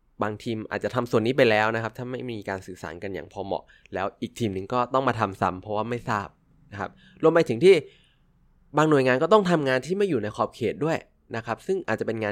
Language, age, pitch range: Thai, 20-39, 100-130 Hz